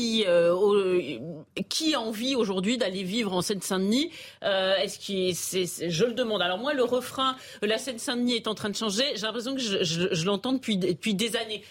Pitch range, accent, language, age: 205-245 Hz, French, French, 40-59